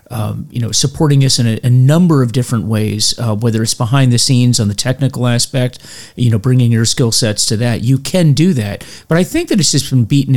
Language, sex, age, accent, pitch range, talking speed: English, male, 40-59, American, 110-140 Hz, 245 wpm